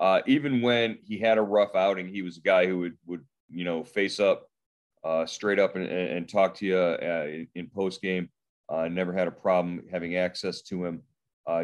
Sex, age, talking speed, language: male, 30-49, 210 wpm, English